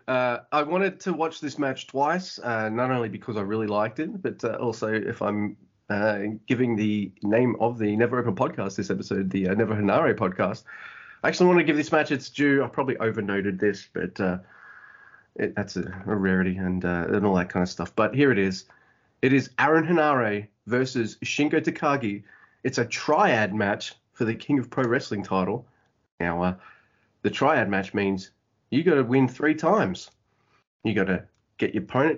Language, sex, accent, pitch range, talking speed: English, male, Australian, 100-140 Hz, 200 wpm